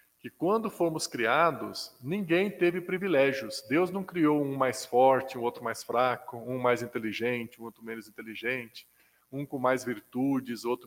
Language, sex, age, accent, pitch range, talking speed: Portuguese, male, 20-39, Brazilian, 120-175 Hz, 160 wpm